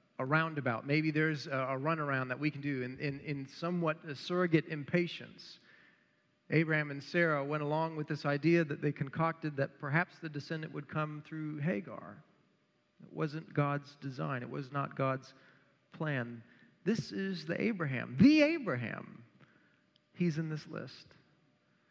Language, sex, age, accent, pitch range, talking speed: English, male, 40-59, American, 140-175 Hz, 150 wpm